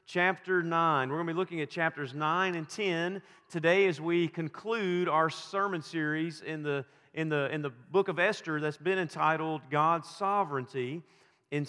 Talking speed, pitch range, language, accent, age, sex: 175 wpm, 155-200 Hz, English, American, 40-59, male